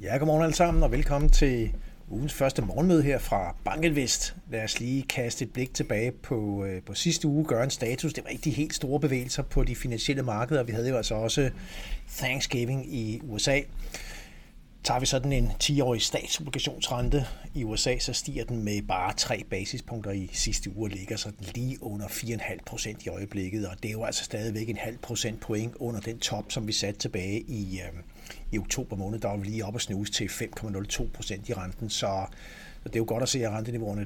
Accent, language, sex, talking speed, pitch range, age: native, Danish, male, 200 wpm, 105-135 Hz, 60-79